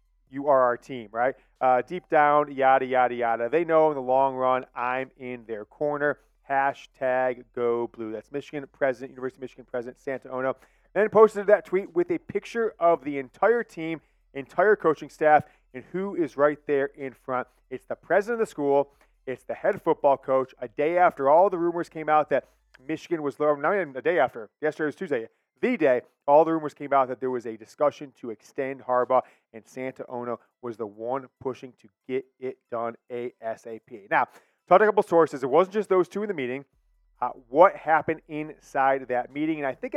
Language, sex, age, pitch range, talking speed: English, male, 30-49, 125-160 Hz, 205 wpm